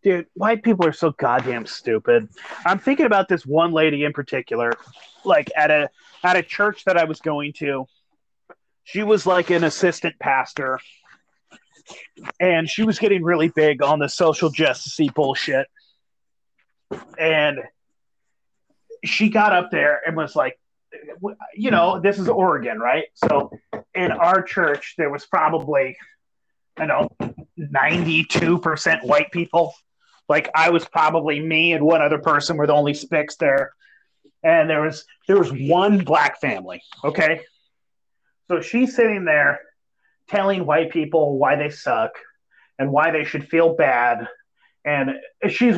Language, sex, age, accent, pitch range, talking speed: English, male, 30-49, American, 150-200 Hz, 145 wpm